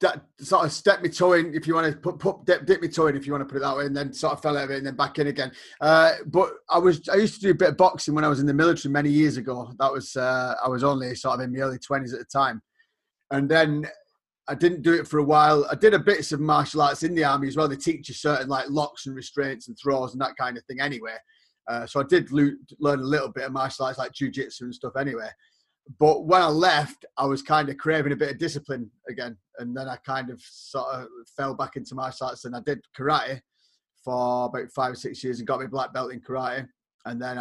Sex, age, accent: male, 30-49, British